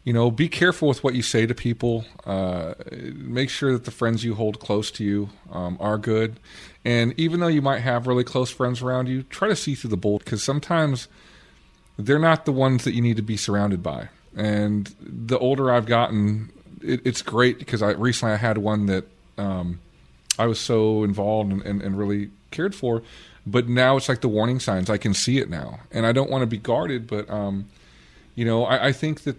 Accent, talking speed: American, 220 wpm